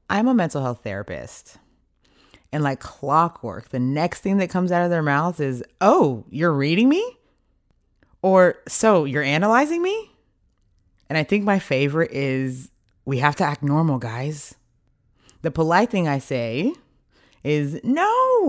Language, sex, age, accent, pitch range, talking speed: English, female, 20-39, American, 120-165 Hz, 150 wpm